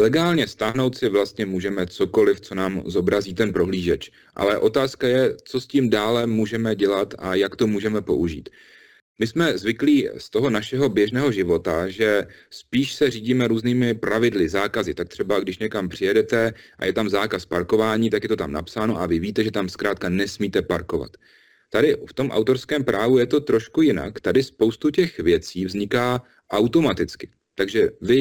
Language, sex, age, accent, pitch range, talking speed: Czech, male, 30-49, native, 105-130 Hz, 170 wpm